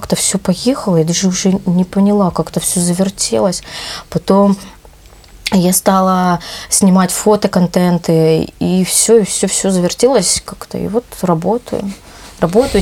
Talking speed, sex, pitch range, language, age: 130 wpm, female, 165-195 Hz, Russian, 20-39